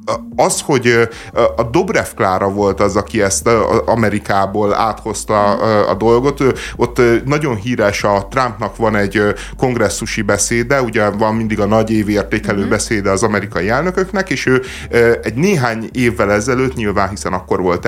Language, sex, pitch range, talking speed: Hungarian, male, 100-125 Hz, 140 wpm